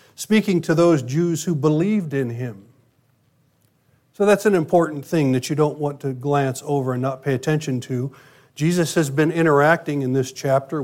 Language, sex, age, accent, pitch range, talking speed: English, male, 50-69, American, 130-160 Hz, 175 wpm